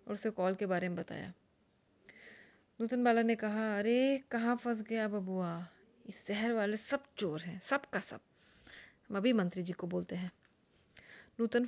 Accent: native